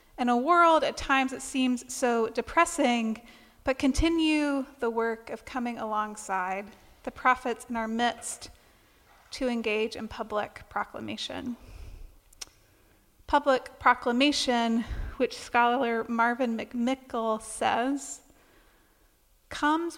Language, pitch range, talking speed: English, 225-270 Hz, 100 wpm